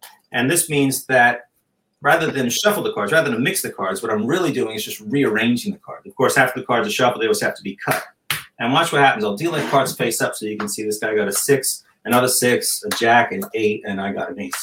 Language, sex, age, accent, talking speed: English, male, 30-49, American, 270 wpm